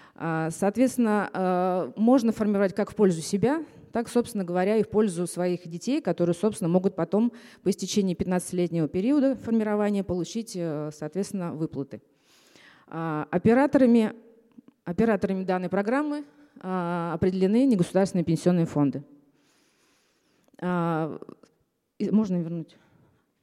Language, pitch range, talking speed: Russian, 170-220 Hz, 90 wpm